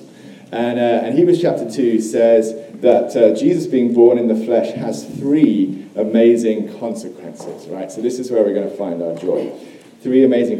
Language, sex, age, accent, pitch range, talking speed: English, male, 40-59, British, 115-175 Hz, 180 wpm